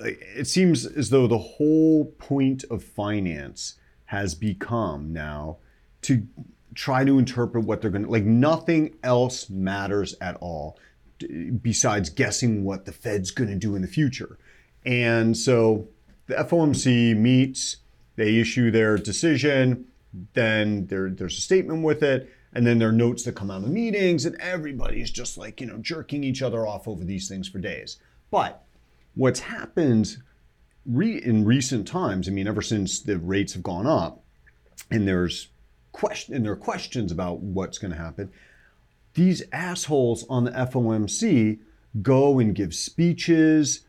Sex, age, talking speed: male, 40-59, 155 wpm